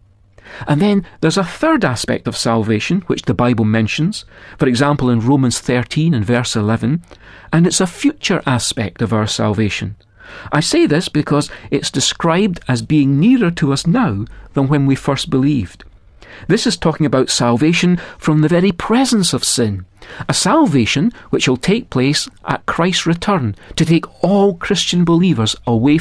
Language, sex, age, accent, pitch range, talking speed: English, male, 40-59, British, 115-180 Hz, 165 wpm